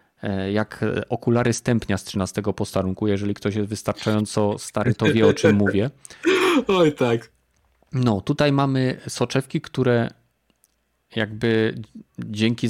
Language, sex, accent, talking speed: Polish, male, native, 120 wpm